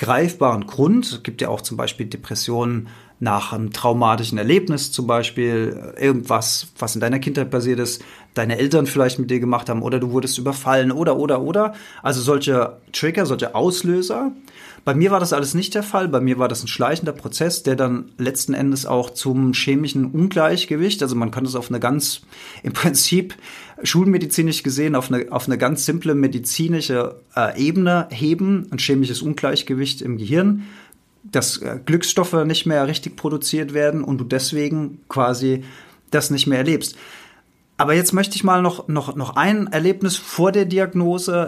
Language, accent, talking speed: German, German, 170 wpm